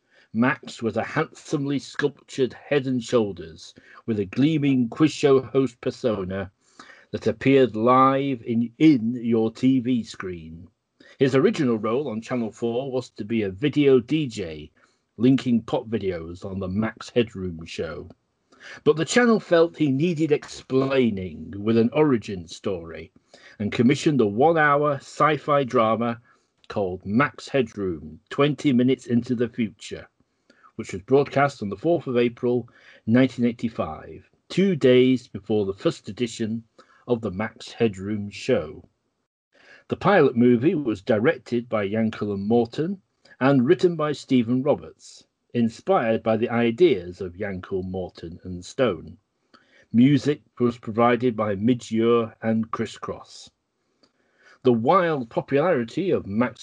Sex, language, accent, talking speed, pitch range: male, English, British, 130 wpm, 110-135 Hz